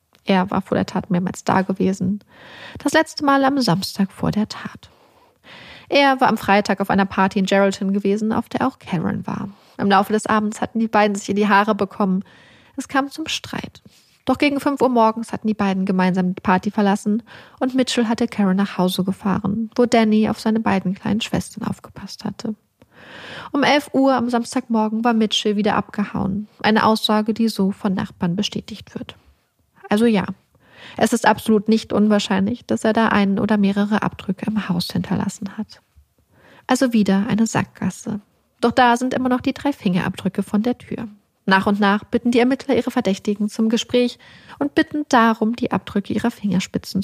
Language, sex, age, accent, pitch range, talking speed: German, female, 30-49, German, 200-235 Hz, 180 wpm